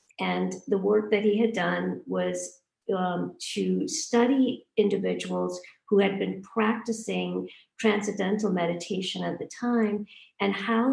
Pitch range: 160-210 Hz